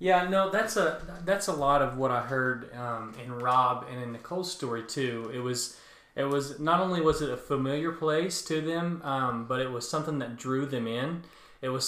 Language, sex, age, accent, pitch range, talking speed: English, male, 20-39, American, 125-155 Hz, 215 wpm